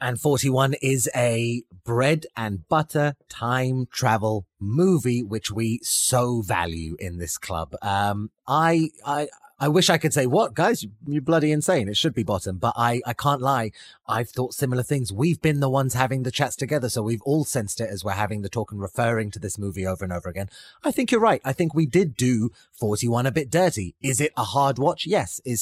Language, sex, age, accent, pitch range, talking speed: English, male, 30-49, British, 105-155 Hz, 210 wpm